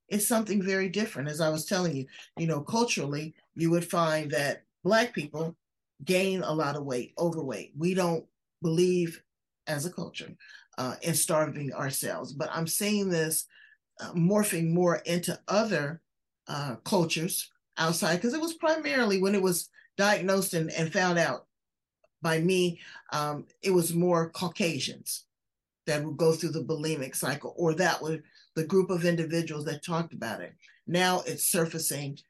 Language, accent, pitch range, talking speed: English, American, 160-190 Hz, 160 wpm